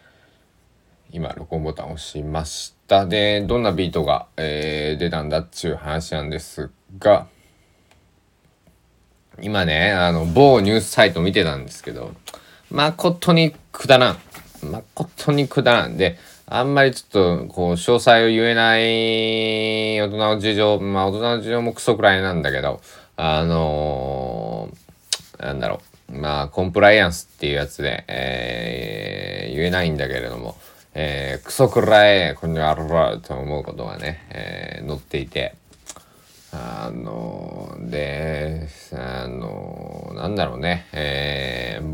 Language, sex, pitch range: Japanese, male, 75-105 Hz